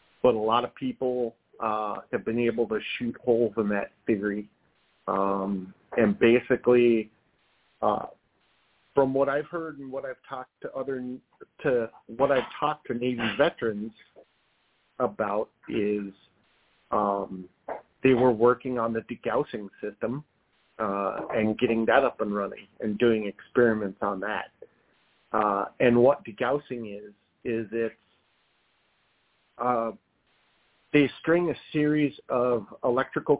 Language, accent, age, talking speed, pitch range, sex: English, American, 40-59, 130 wpm, 110-130 Hz, male